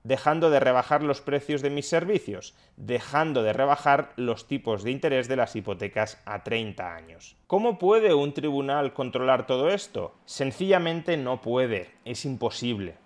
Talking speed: 150 wpm